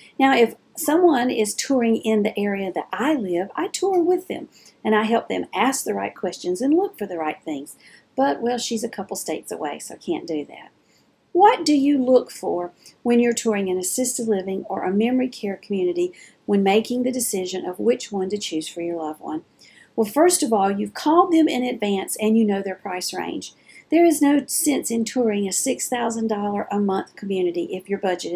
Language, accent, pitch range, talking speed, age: English, American, 200-255 Hz, 210 wpm, 50-69